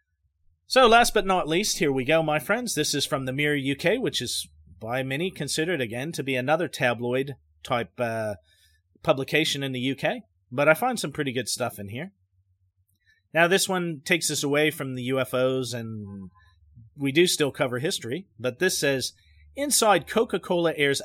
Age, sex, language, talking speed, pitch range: 40-59, male, English, 170 wpm, 125-170 Hz